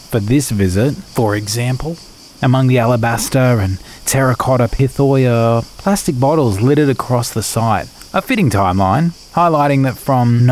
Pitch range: 110-145 Hz